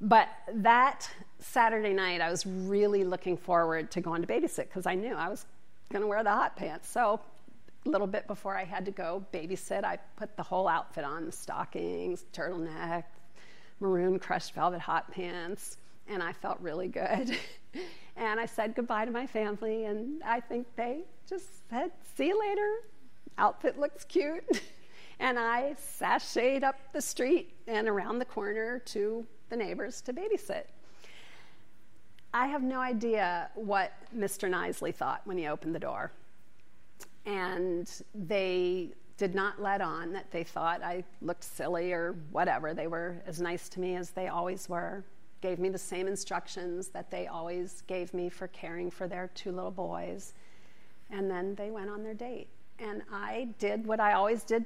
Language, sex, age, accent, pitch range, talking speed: English, female, 50-69, American, 180-230 Hz, 170 wpm